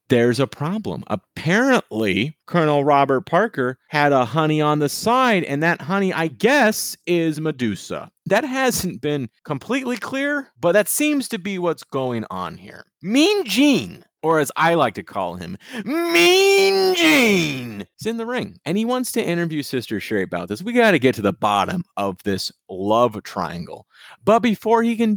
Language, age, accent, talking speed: English, 30-49, American, 175 wpm